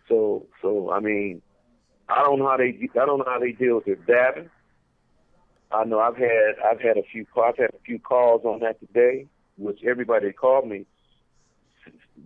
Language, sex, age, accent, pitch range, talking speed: English, male, 50-69, American, 115-175 Hz, 195 wpm